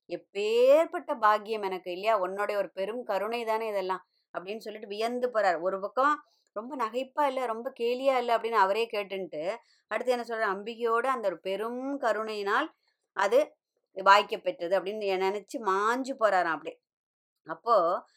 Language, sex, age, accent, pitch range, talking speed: Tamil, male, 20-39, native, 190-245 Hz, 140 wpm